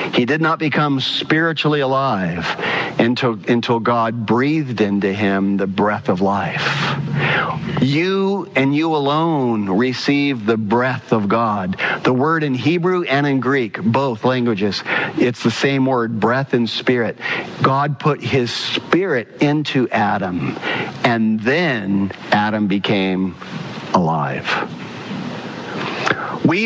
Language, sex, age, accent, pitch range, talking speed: English, male, 50-69, American, 130-210 Hz, 120 wpm